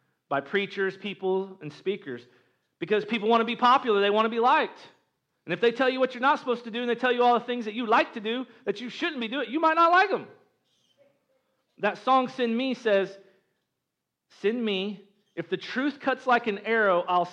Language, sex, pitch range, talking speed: English, male, 185-245 Hz, 220 wpm